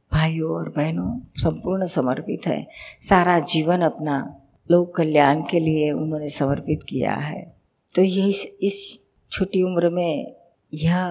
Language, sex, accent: Hindi, female, native